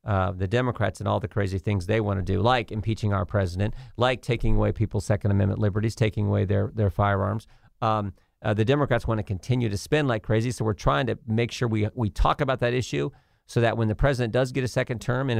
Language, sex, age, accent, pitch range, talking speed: English, male, 50-69, American, 105-130 Hz, 240 wpm